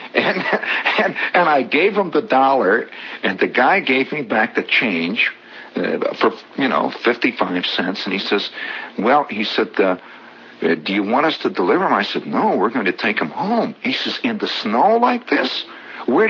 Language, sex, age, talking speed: English, male, 60-79, 195 wpm